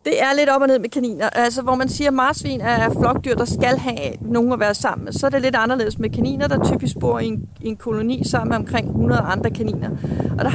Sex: female